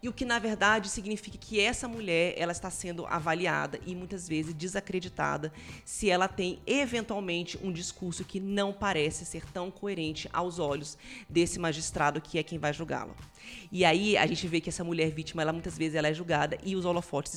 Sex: female